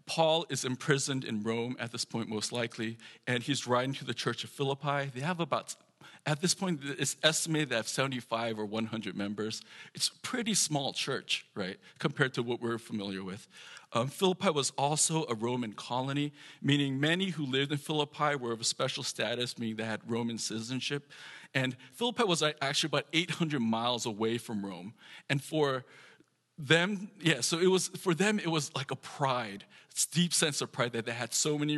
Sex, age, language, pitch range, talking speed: male, 40-59, English, 115-150 Hz, 190 wpm